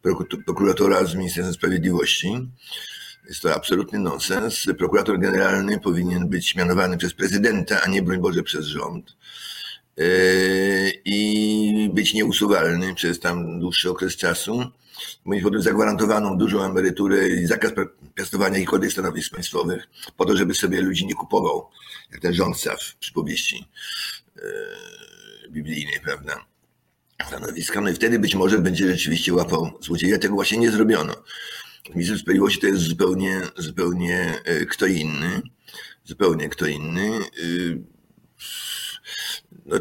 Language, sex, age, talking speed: Polish, male, 50-69, 125 wpm